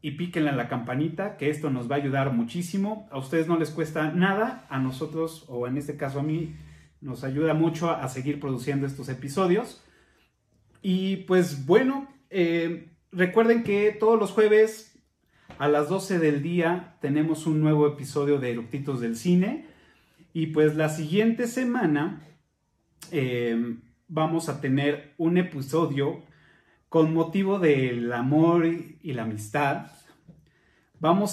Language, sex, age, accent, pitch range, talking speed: Spanish, male, 30-49, Mexican, 135-175 Hz, 145 wpm